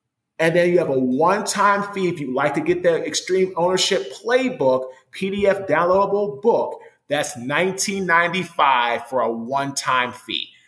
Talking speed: 140 wpm